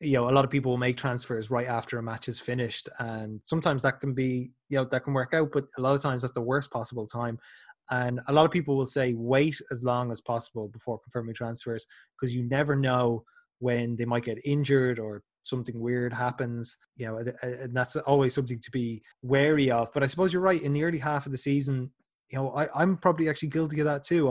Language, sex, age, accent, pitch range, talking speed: English, male, 20-39, Irish, 120-140 Hz, 235 wpm